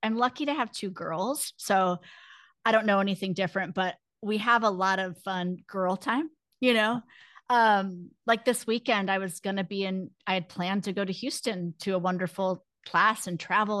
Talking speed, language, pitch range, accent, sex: 200 wpm, English, 185-225 Hz, American, female